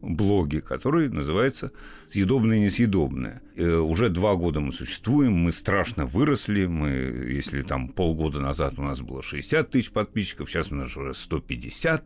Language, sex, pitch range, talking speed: Russian, male, 80-105 Hz, 140 wpm